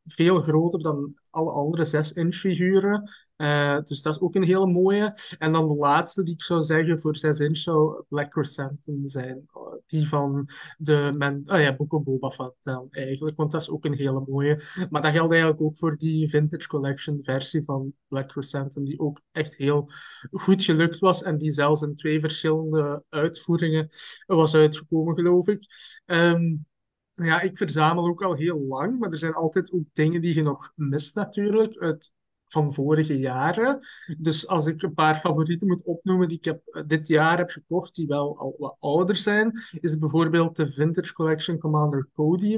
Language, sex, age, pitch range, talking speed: Dutch, male, 20-39, 145-170 Hz, 180 wpm